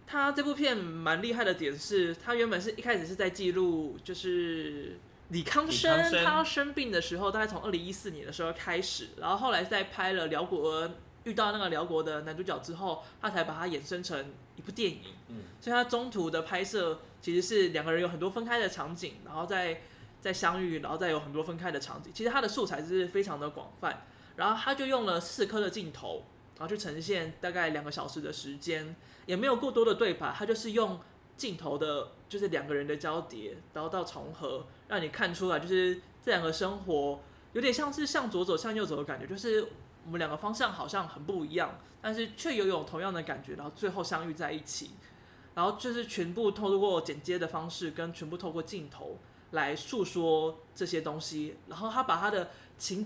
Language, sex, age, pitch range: Chinese, male, 20-39, 160-210 Hz